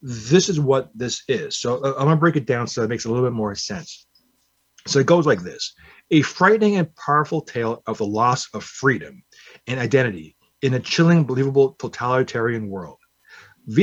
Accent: American